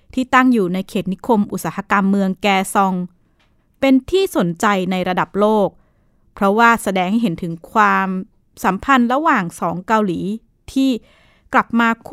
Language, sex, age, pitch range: Thai, female, 20-39, 185-230 Hz